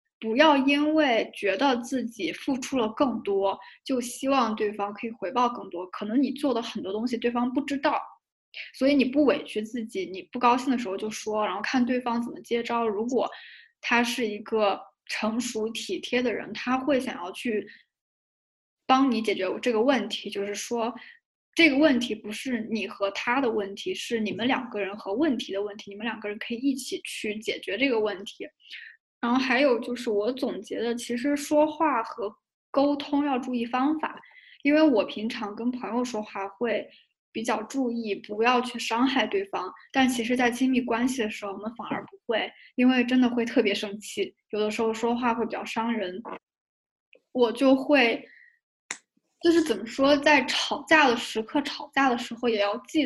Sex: female